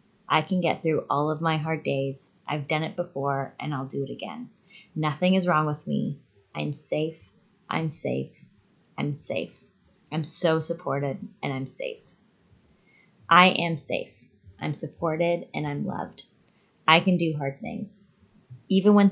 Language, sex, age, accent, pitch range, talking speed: English, female, 20-39, American, 150-180 Hz, 155 wpm